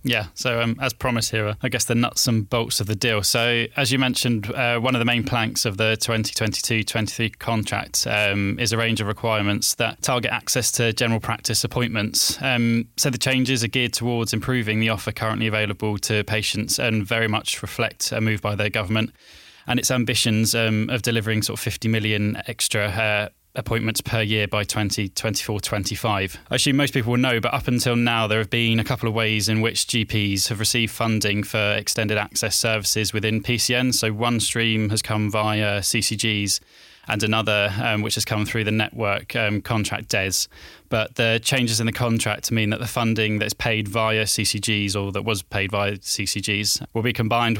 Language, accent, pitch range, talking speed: English, British, 105-120 Hz, 195 wpm